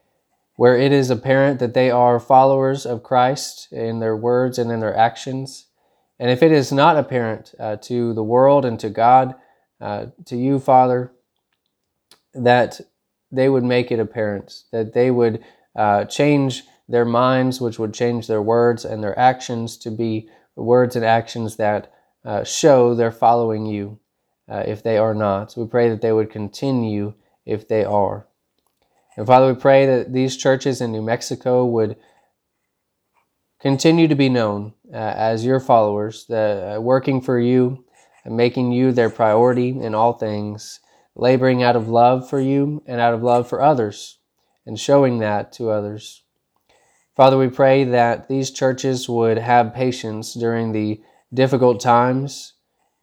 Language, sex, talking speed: English, male, 160 wpm